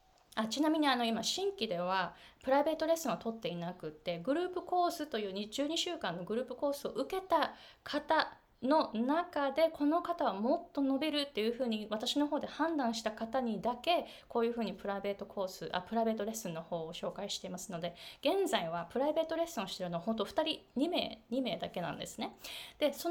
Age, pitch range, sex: 20-39, 200-310 Hz, female